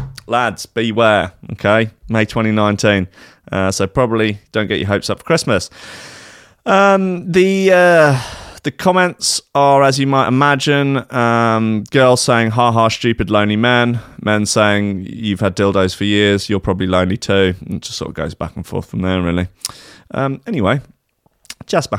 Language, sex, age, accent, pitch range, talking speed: English, male, 30-49, British, 95-130 Hz, 160 wpm